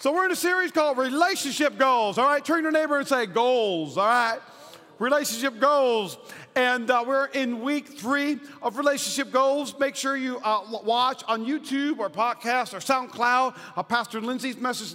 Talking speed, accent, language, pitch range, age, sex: 180 wpm, American, English, 215-260 Hz, 40-59, male